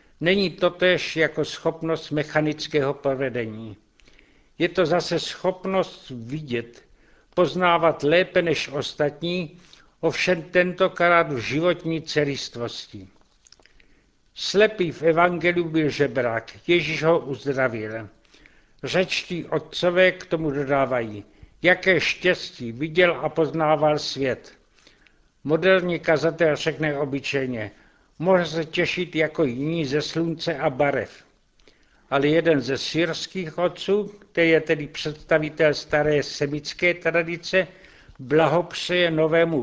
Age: 60-79